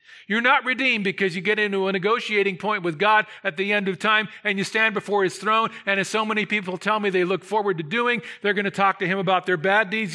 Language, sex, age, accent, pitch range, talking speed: English, male, 50-69, American, 175-215 Hz, 265 wpm